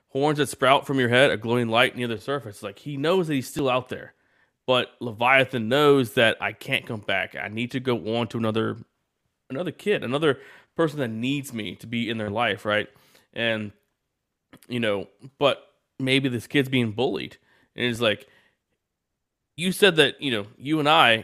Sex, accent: male, American